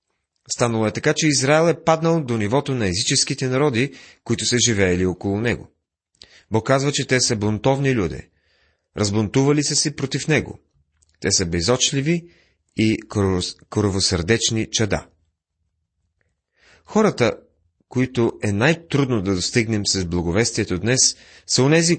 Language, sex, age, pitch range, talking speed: Bulgarian, male, 30-49, 95-130 Hz, 125 wpm